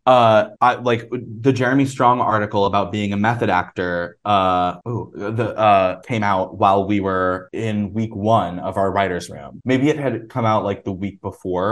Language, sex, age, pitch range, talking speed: English, male, 20-39, 95-110 Hz, 190 wpm